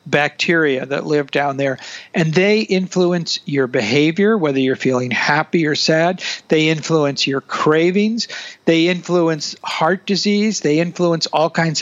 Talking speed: 140 wpm